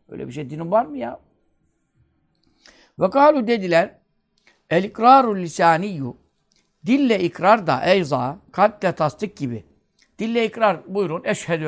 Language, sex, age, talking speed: Turkish, male, 60-79, 120 wpm